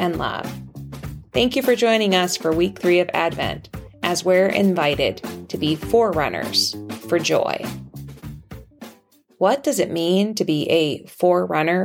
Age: 30-49